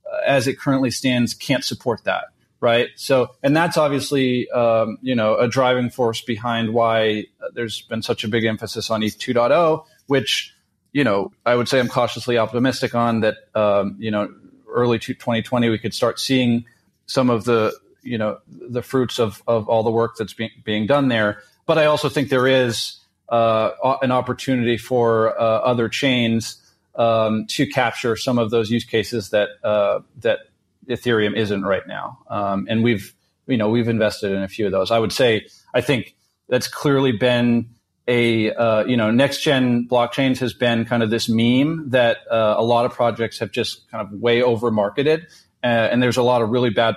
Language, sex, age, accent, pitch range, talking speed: English, male, 30-49, American, 110-125 Hz, 190 wpm